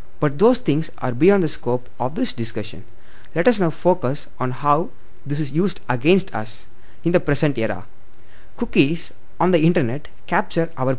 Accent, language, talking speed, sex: native, Tamil, 170 wpm, male